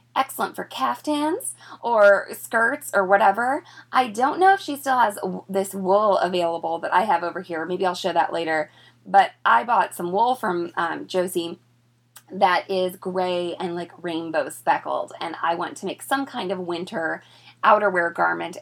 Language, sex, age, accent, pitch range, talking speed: English, female, 20-39, American, 175-240 Hz, 170 wpm